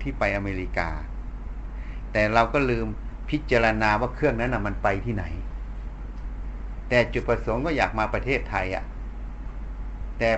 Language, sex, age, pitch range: Thai, male, 60-79, 100-120 Hz